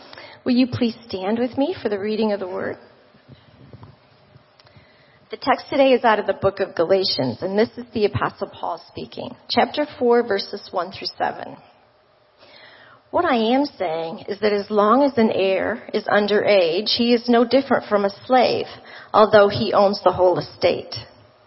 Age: 40-59